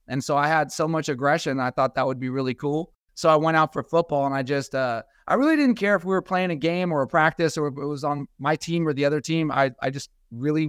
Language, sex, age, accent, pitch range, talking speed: English, male, 30-49, American, 135-165 Hz, 290 wpm